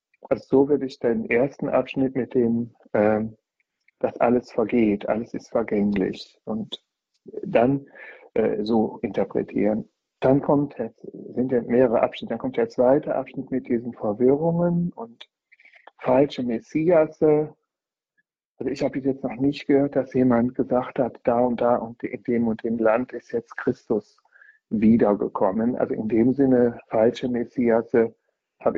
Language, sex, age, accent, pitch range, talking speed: German, male, 60-79, German, 115-130 Hz, 140 wpm